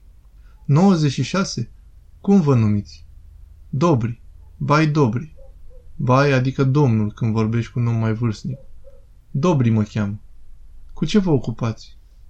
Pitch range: 115-145 Hz